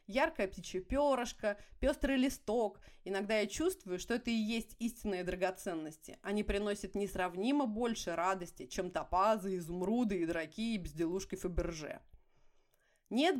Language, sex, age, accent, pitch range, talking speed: Russian, female, 30-49, native, 195-265 Hz, 125 wpm